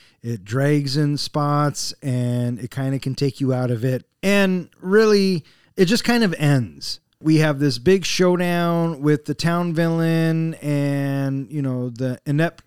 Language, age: English, 30-49